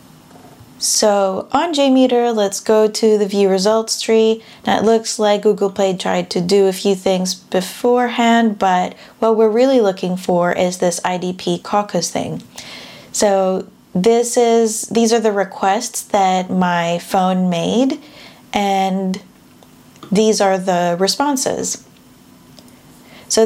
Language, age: English, 20-39